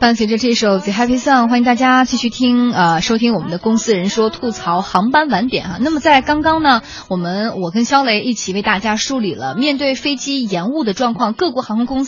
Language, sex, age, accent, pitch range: Chinese, female, 20-39, native, 195-270 Hz